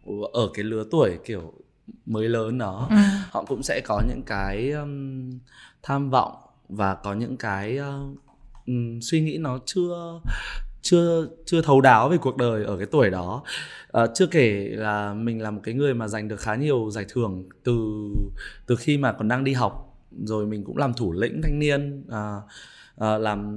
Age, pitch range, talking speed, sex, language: 20-39, 115-155 Hz, 185 wpm, male, Vietnamese